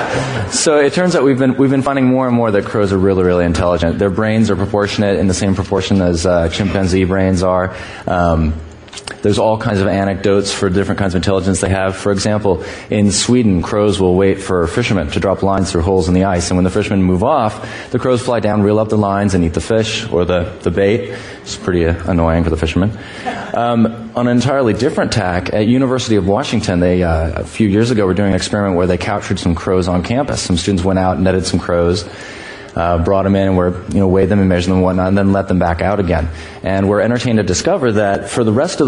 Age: 20-39